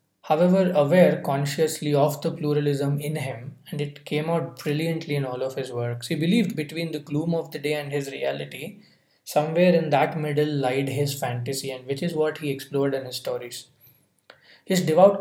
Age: 20-39